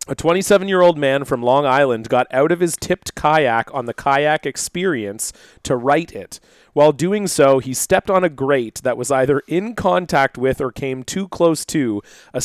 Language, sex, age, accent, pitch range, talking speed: English, male, 30-49, American, 130-170 Hz, 190 wpm